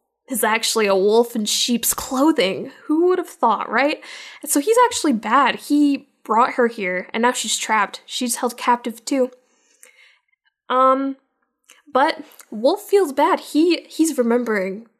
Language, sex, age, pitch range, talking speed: English, female, 10-29, 215-285 Hz, 150 wpm